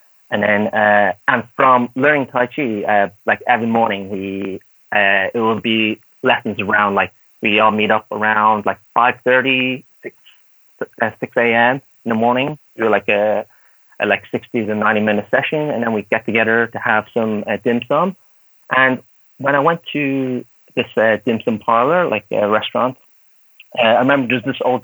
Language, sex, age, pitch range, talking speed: English, male, 30-49, 110-135 Hz, 175 wpm